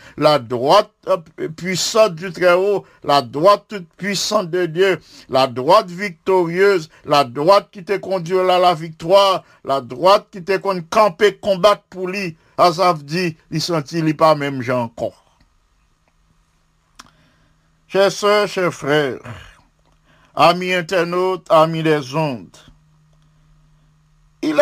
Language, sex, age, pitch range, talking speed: English, male, 50-69, 160-200 Hz, 120 wpm